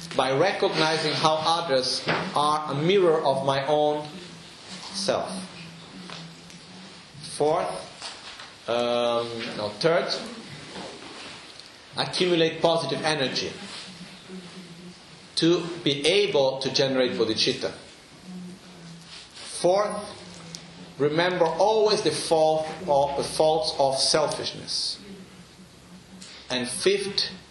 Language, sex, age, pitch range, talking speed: Italian, male, 50-69, 140-180 Hz, 75 wpm